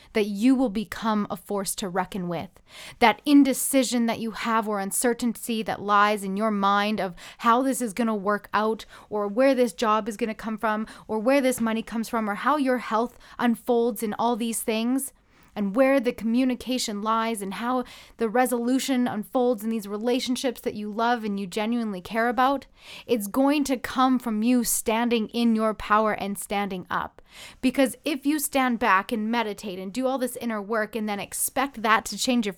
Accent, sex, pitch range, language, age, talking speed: American, female, 210-245 Hz, English, 20-39, 195 wpm